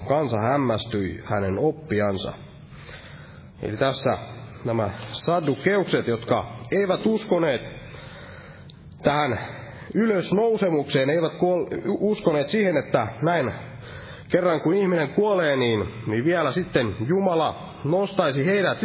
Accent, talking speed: native, 90 wpm